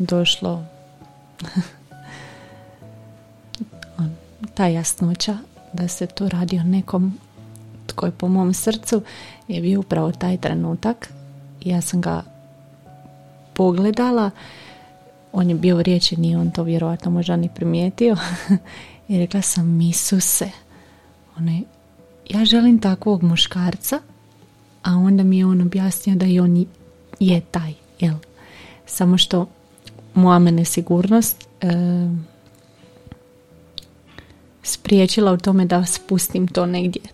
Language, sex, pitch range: Croatian, female, 160-190 Hz